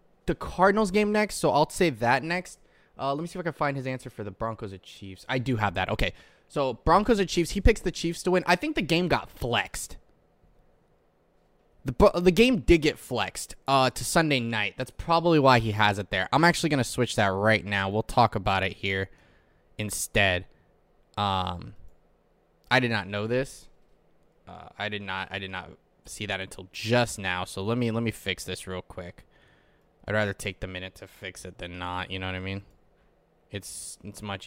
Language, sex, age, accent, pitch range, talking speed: English, male, 20-39, American, 95-140 Hz, 210 wpm